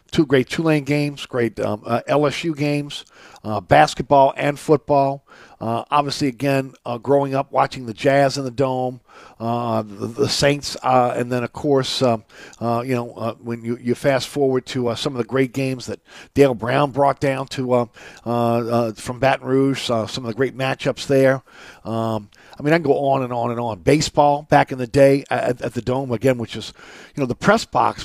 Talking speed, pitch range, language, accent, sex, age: 210 wpm, 120-140 Hz, English, American, male, 50-69